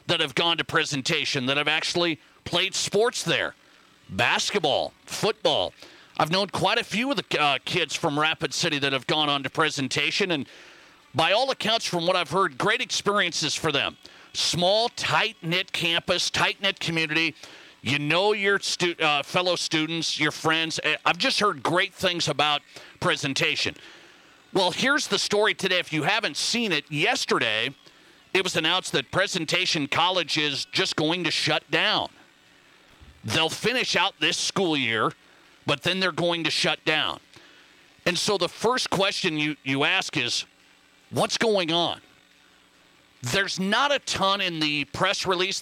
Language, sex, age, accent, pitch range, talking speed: English, male, 40-59, American, 155-190 Hz, 155 wpm